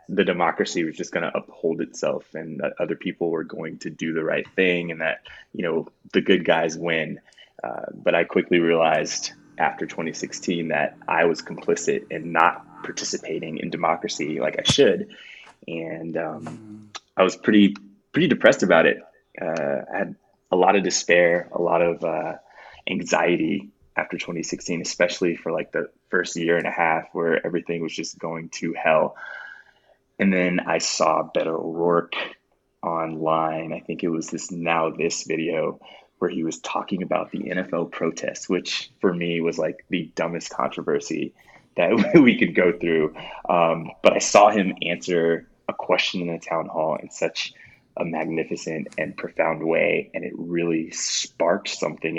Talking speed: 165 wpm